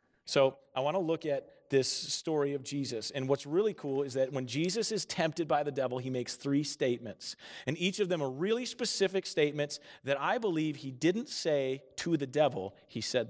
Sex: male